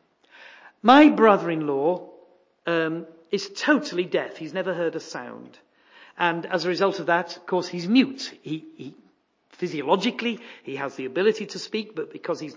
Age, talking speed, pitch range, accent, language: 50-69, 155 wpm, 170-275 Hz, British, English